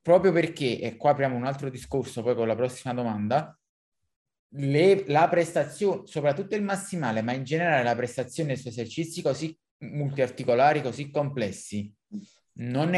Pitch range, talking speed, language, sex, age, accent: 120-145 Hz, 145 wpm, Italian, male, 20-39, native